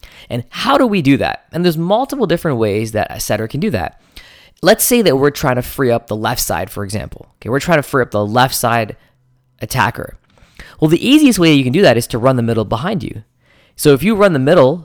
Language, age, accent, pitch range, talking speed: English, 20-39, American, 120-155 Hz, 245 wpm